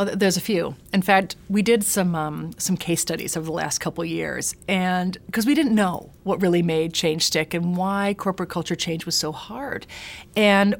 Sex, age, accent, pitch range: female, 40-59, American, 165-200 Hz